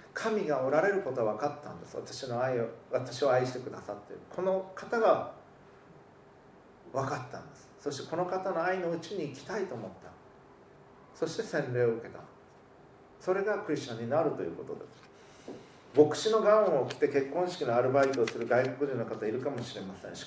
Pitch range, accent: 125-175 Hz, native